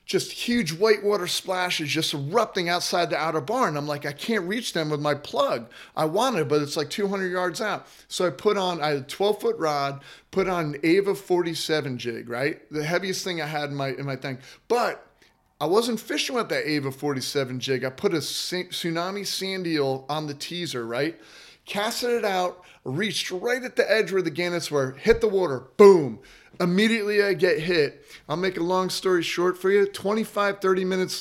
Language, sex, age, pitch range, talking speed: English, male, 30-49, 150-190 Hz, 200 wpm